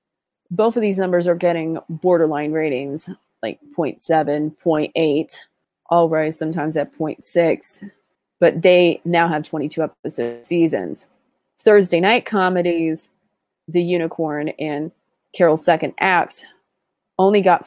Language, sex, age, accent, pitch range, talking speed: English, female, 20-39, American, 160-185 Hz, 115 wpm